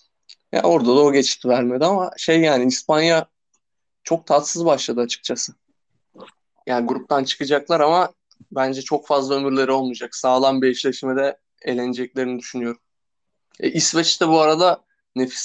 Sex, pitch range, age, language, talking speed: male, 130-155 Hz, 20-39, Turkish, 130 wpm